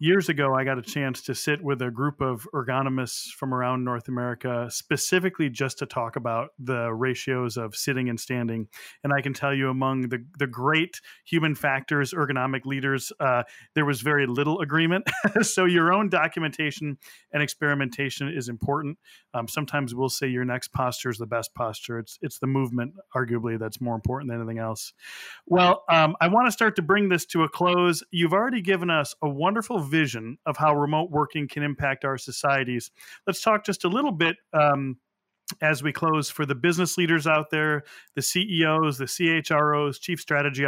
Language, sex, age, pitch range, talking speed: English, male, 30-49, 130-170 Hz, 185 wpm